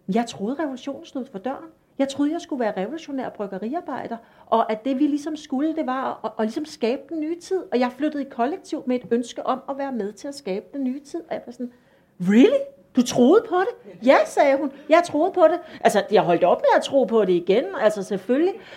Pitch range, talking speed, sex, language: 220-285 Hz, 235 wpm, female, Danish